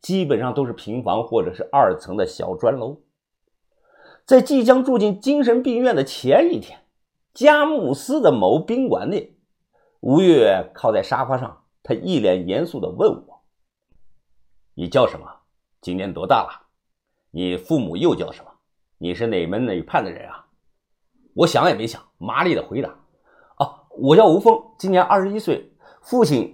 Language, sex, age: Chinese, male, 50-69